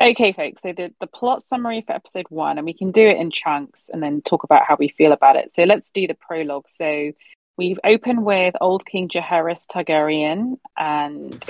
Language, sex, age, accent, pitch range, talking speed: English, female, 30-49, British, 150-175 Hz, 210 wpm